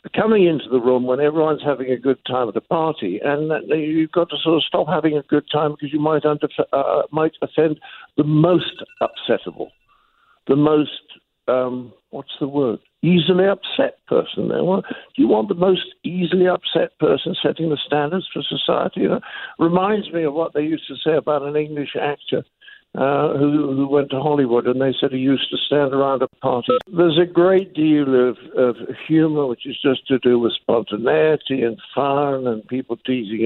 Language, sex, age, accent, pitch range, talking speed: English, male, 60-79, British, 125-160 Hz, 190 wpm